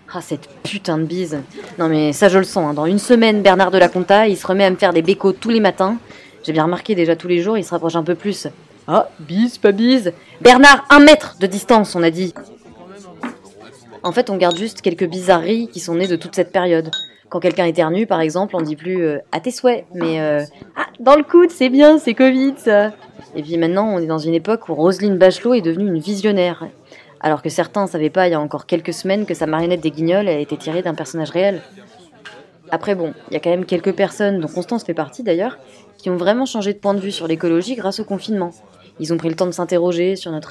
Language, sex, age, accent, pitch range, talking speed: French, female, 20-39, French, 165-205 Hz, 245 wpm